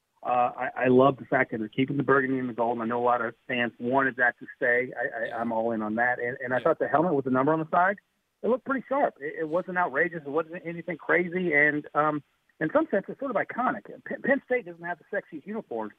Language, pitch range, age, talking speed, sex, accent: English, 110-155 Hz, 40-59, 275 wpm, male, American